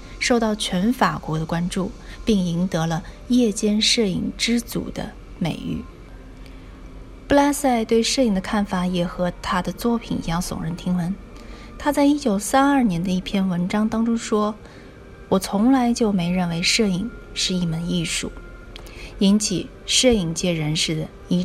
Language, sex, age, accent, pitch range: Chinese, female, 30-49, native, 180-235 Hz